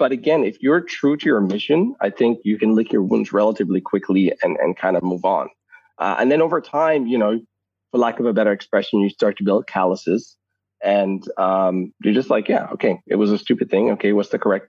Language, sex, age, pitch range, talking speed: English, male, 30-49, 100-140 Hz, 235 wpm